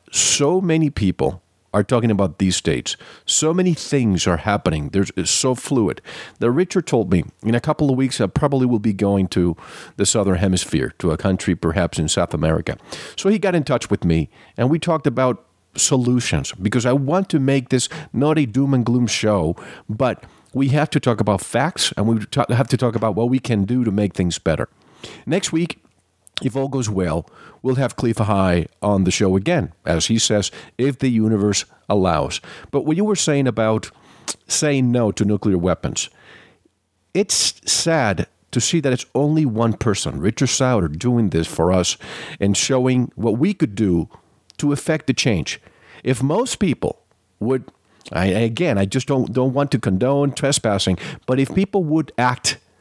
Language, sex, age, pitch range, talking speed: English, male, 50-69, 100-140 Hz, 185 wpm